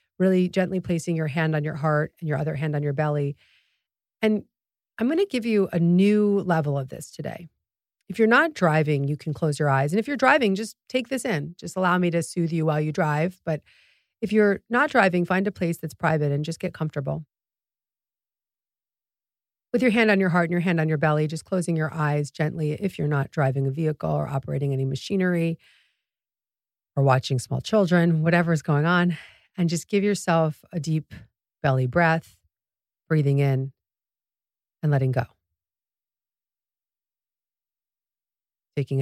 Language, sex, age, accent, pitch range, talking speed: English, female, 40-59, American, 145-185 Hz, 180 wpm